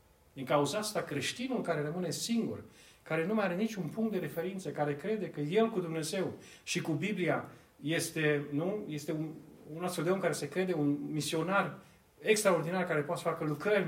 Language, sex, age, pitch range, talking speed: Romanian, male, 40-59, 120-175 Hz, 185 wpm